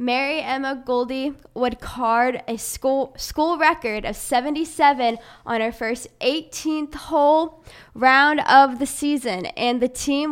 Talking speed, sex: 135 wpm, female